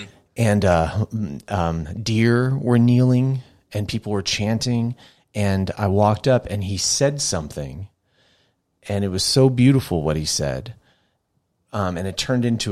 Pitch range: 95-120 Hz